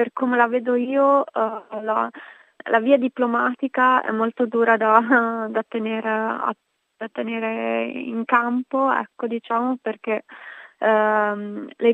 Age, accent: 20-39, native